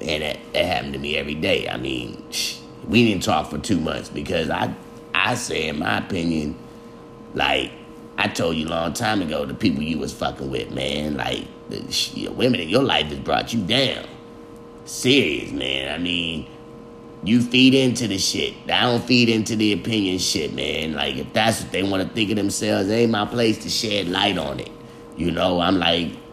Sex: male